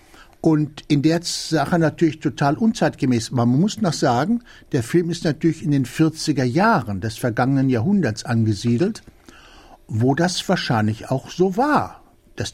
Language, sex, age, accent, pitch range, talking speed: German, male, 60-79, German, 130-170 Hz, 145 wpm